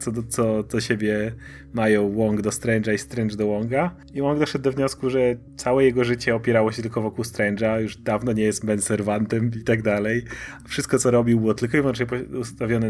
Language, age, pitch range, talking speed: Polish, 30-49, 105-130 Hz, 200 wpm